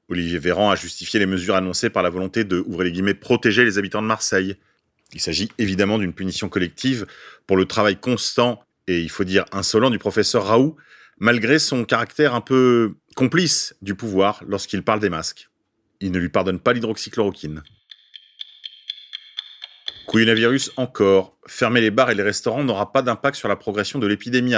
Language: French